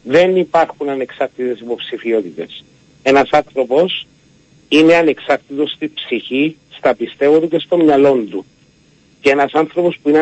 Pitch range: 135-165 Hz